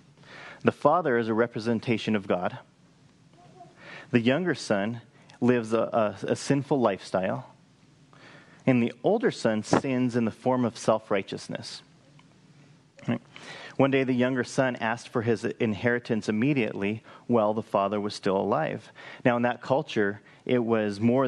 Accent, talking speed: American, 135 wpm